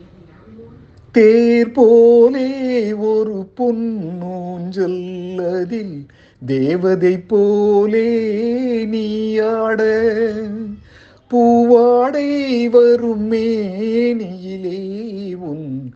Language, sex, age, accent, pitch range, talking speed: Tamil, male, 50-69, native, 180-235 Hz, 50 wpm